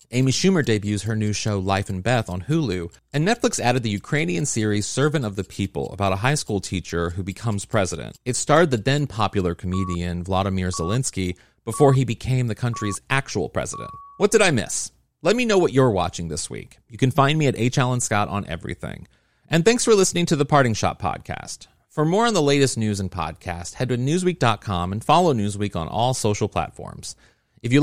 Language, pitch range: English, 100-145 Hz